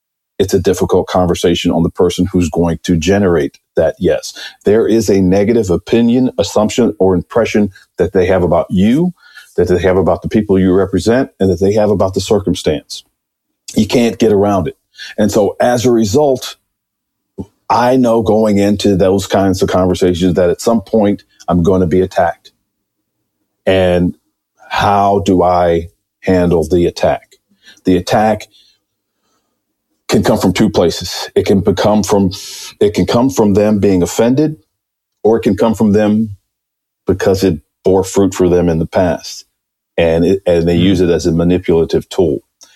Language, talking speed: English, 165 wpm